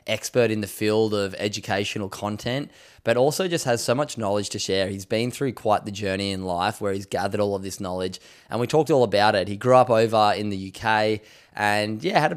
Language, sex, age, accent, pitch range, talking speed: English, male, 20-39, Australian, 100-120 Hz, 235 wpm